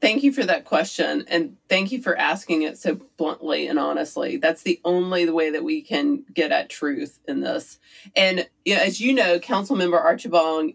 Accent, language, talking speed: American, English, 200 wpm